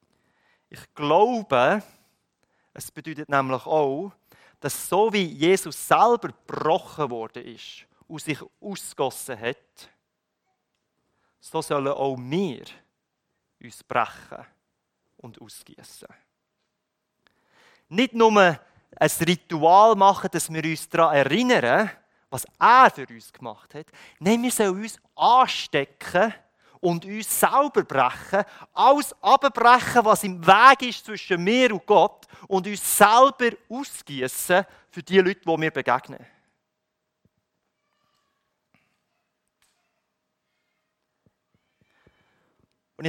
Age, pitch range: 30-49, 155-215 Hz